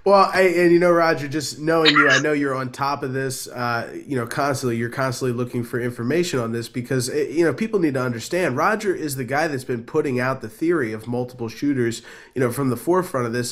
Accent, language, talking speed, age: American, English, 235 wpm, 20-39